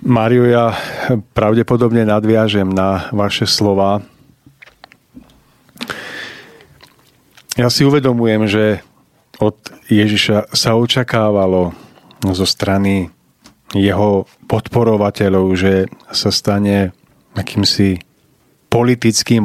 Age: 40-59